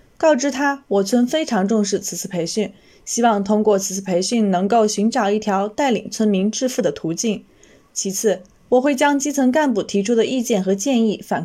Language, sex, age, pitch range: Chinese, female, 20-39, 200-255 Hz